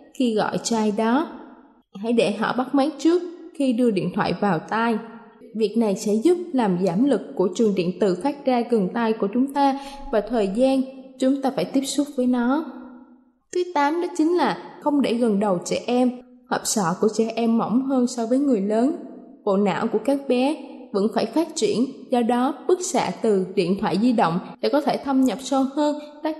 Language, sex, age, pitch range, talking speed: Vietnamese, female, 20-39, 210-270 Hz, 210 wpm